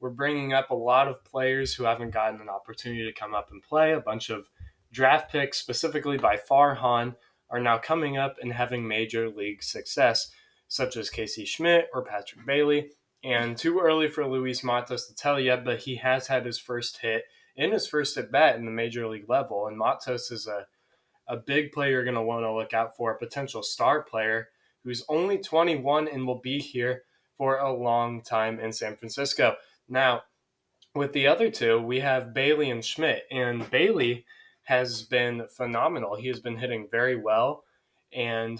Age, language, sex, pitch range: 20-39, English, male, 115-140 Hz